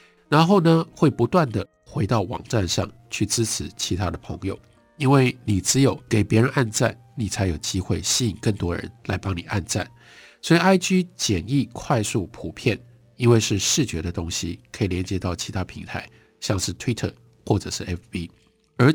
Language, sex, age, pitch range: Chinese, male, 50-69, 95-125 Hz